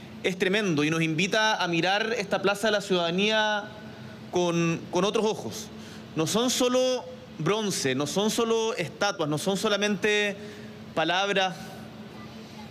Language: Spanish